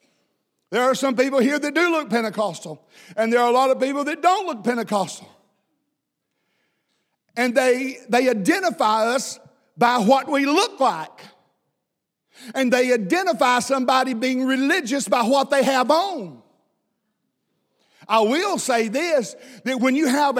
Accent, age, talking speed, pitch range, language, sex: American, 50-69, 145 wpm, 245-305 Hz, English, male